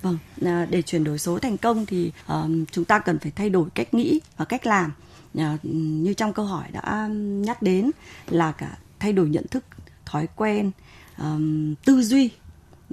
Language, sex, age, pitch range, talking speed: Vietnamese, female, 20-39, 165-215 Hz, 165 wpm